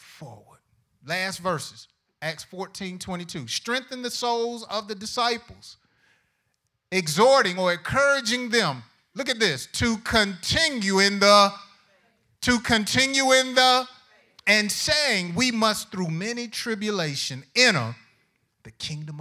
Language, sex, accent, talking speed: English, male, American, 110 wpm